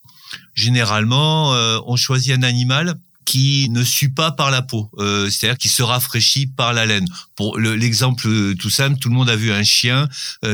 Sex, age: male, 50-69